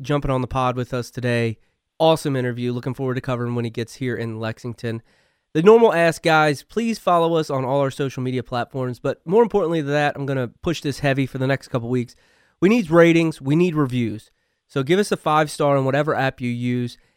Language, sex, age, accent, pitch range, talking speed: English, male, 30-49, American, 125-160 Hz, 230 wpm